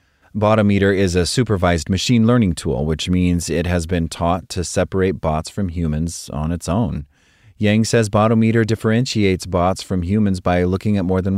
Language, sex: English, male